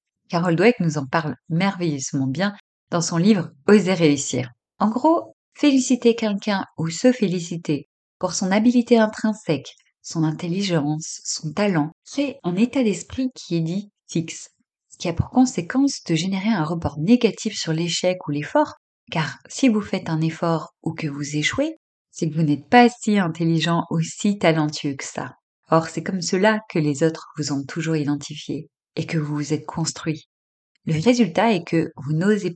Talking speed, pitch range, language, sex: 180 wpm, 155-220 Hz, French, female